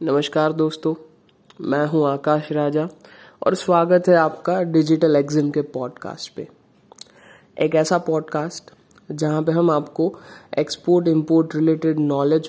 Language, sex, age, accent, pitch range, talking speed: Hindi, female, 20-39, native, 150-175 Hz, 125 wpm